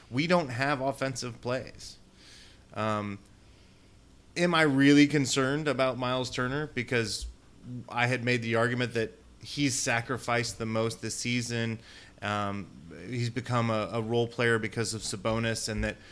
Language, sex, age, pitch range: English, male, 30-49, 110-135 Hz